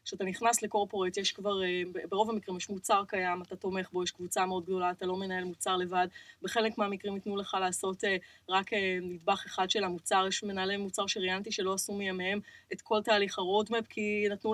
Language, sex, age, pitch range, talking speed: Hebrew, female, 20-39, 190-225 Hz, 180 wpm